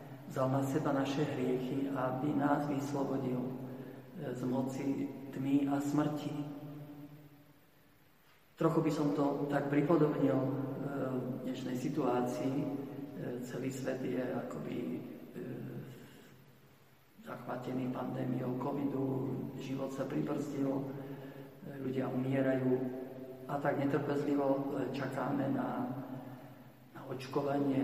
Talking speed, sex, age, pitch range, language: 85 wpm, male, 50-69, 130-145 Hz, Slovak